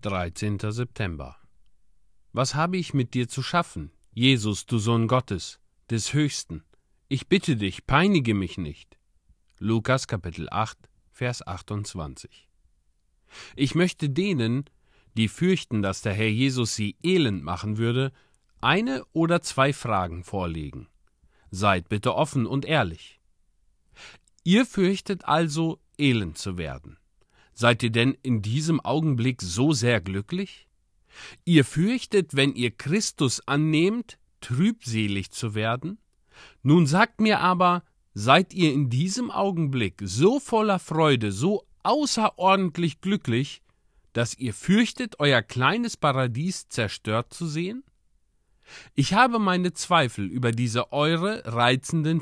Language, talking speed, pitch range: German, 120 wpm, 105-170 Hz